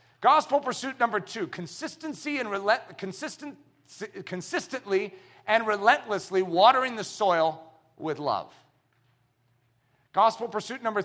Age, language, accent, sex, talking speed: 40-59, English, American, male, 105 wpm